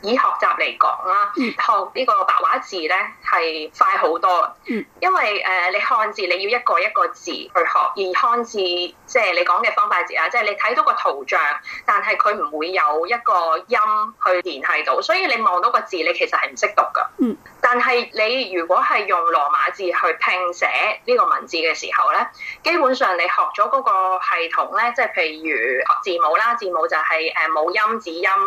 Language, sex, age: Chinese, female, 20-39